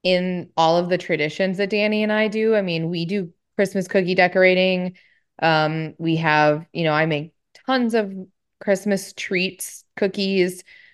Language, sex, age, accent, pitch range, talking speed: English, female, 20-39, American, 160-190 Hz, 160 wpm